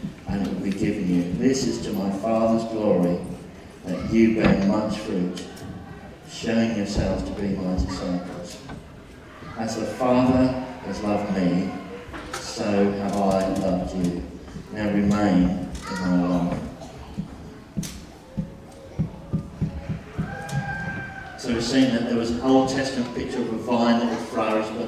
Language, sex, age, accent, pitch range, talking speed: English, male, 40-59, British, 95-120 Hz, 130 wpm